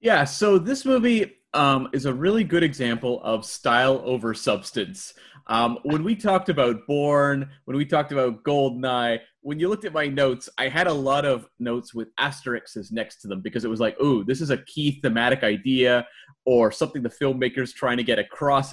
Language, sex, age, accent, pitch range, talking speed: English, male, 30-49, American, 125-160 Hz, 195 wpm